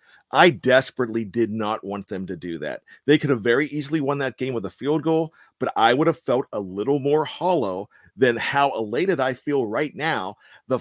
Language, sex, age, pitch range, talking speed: English, male, 40-59, 125-165 Hz, 210 wpm